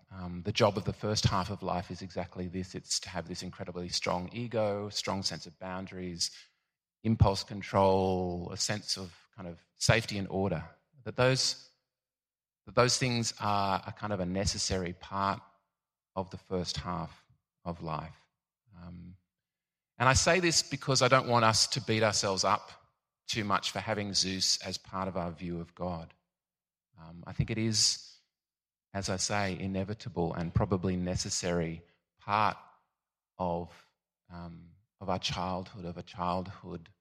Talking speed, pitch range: 160 wpm, 90-110 Hz